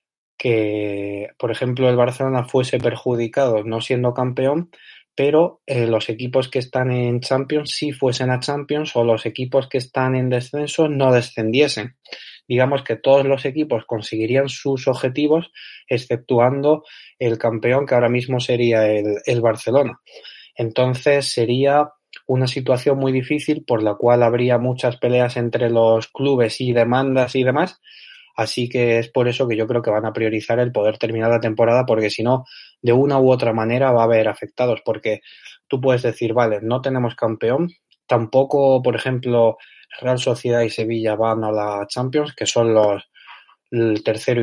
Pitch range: 115-135 Hz